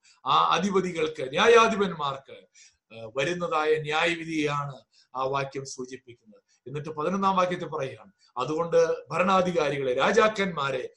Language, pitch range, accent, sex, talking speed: Malayalam, 135-195 Hz, native, male, 80 wpm